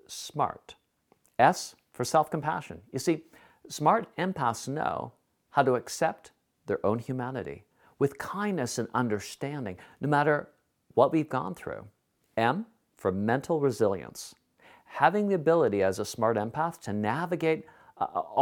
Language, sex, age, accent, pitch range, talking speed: English, male, 50-69, American, 115-160 Hz, 125 wpm